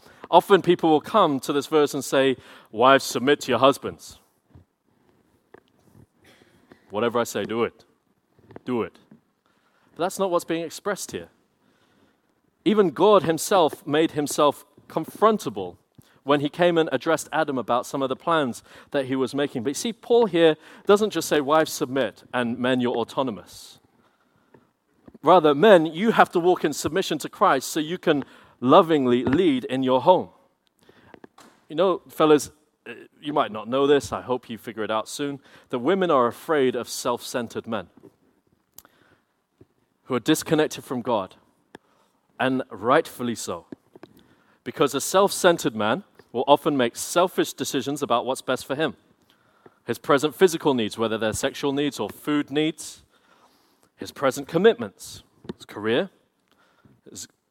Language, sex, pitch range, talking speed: English, male, 130-165 Hz, 150 wpm